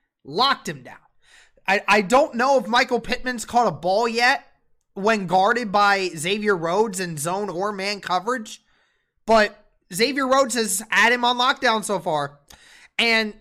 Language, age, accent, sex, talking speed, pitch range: English, 20-39, American, male, 155 wpm, 185-240 Hz